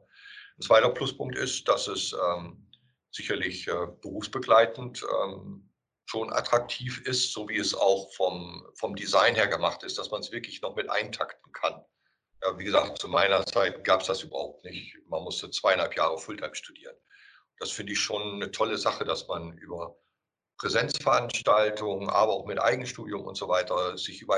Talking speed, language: 170 wpm, German